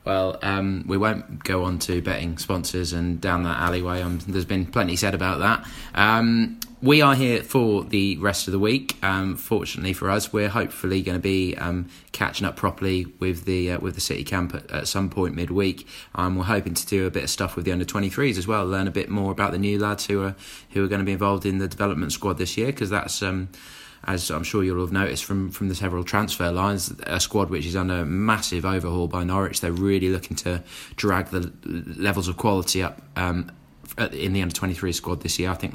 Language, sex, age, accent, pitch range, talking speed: English, male, 20-39, British, 90-105 Hz, 225 wpm